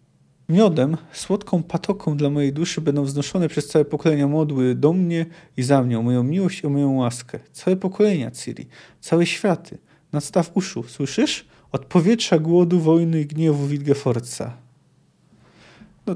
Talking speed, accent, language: 150 wpm, native, Polish